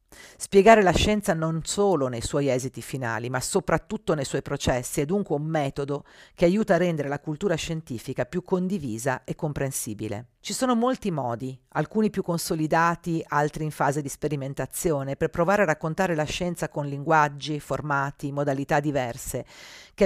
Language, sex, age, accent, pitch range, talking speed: Italian, female, 50-69, native, 135-175 Hz, 160 wpm